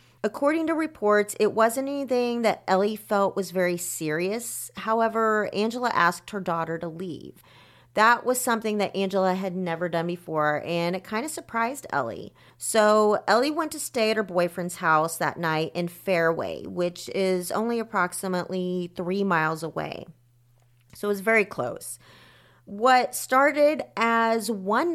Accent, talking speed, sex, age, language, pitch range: American, 150 wpm, female, 30-49, English, 170-220 Hz